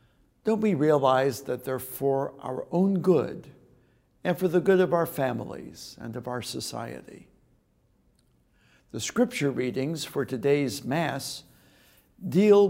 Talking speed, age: 130 wpm, 60-79